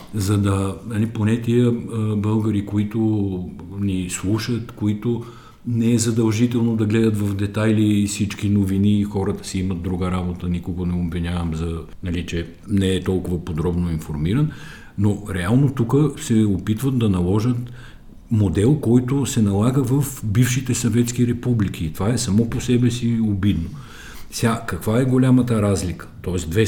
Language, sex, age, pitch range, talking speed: Bulgarian, male, 50-69, 90-120 Hz, 145 wpm